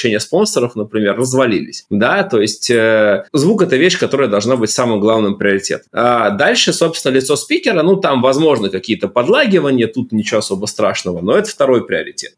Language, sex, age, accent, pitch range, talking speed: Russian, male, 20-39, native, 115-155 Hz, 165 wpm